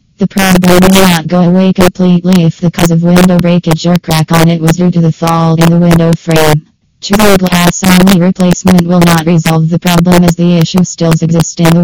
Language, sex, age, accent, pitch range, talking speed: English, female, 20-39, American, 165-180 Hz, 215 wpm